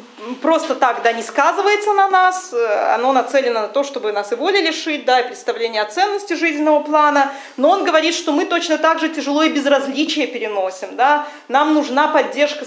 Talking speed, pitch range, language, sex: 180 wpm, 250-315 Hz, English, female